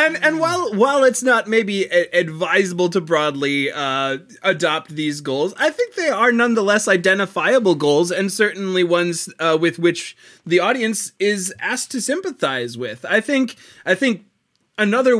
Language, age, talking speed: English, 20-39, 155 wpm